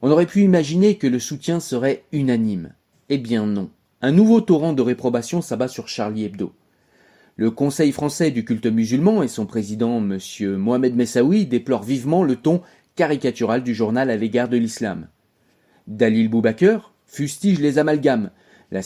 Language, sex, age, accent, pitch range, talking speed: French, male, 30-49, French, 115-155 Hz, 160 wpm